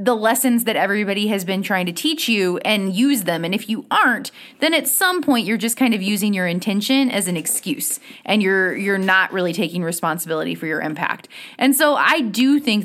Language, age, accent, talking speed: English, 20-39, American, 215 wpm